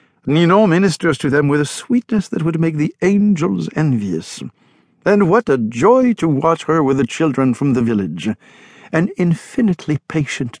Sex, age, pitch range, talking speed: male, 60-79, 135-200 Hz, 165 wpm